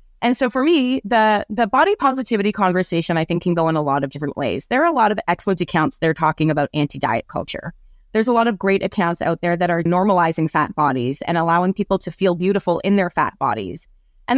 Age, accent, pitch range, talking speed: 20-39, American, 165-225 Hz, 230 wpm